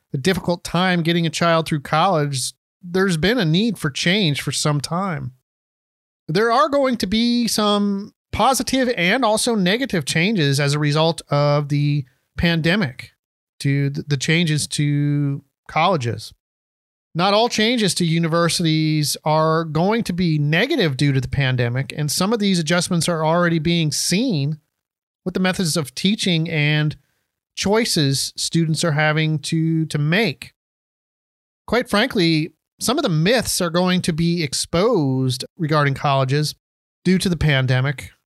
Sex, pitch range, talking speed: male, 145-195 Hz, 145 wpm